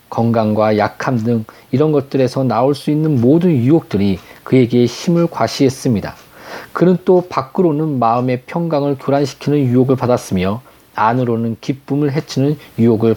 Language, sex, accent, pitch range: Korean, male, native, 115-150 Hz